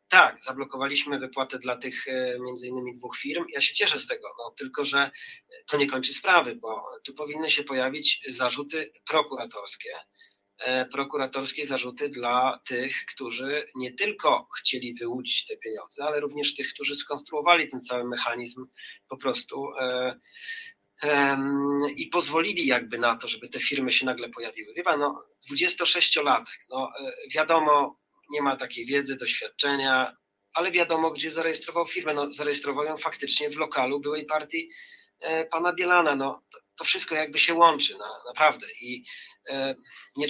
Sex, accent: male, native